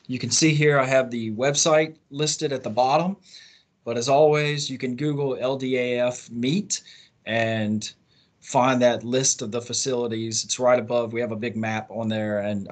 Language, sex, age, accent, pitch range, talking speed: English, male, 30-49, American, 120-160 Hz, 180 wpm